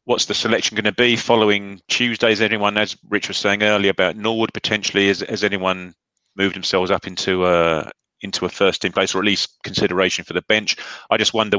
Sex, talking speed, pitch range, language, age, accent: male, 200 wpm, 90-110 Hz, English, 30-49, British